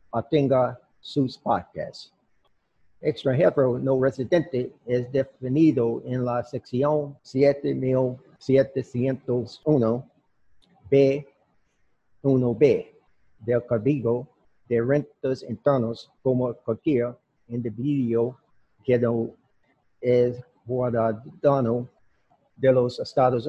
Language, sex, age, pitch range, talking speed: English, male, 50-69, 115-135 Hz, 70 wpm